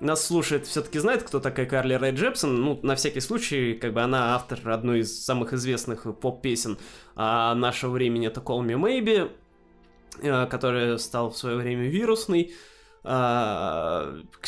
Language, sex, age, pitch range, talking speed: Russian, male, 20-39, 120-150 Hz, 155 wpm